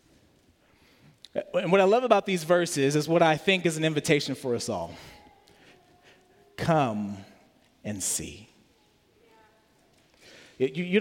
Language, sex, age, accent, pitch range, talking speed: English, male, 40-59, American, 150-200 Hz, 115 wpm